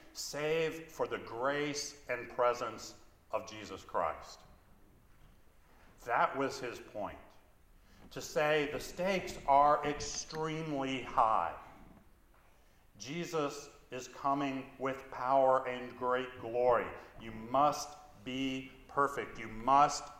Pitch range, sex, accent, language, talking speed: 105-140 Hz, male, American, English, 100 wpm